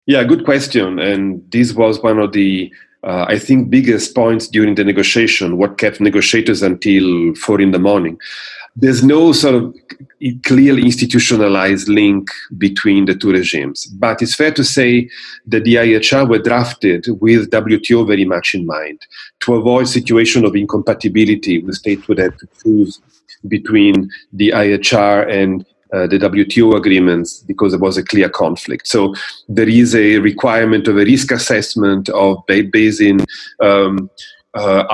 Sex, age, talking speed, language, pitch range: male, 40-59, 155 wpm, English, 95-120 Hz